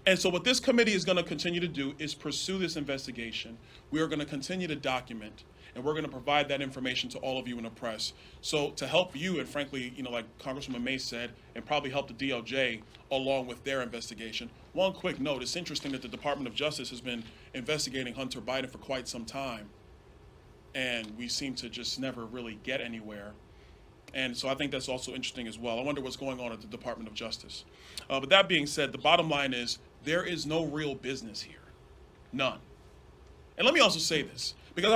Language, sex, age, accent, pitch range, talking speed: English, male, 30-49, American, 120-160 Hz, 215 wpm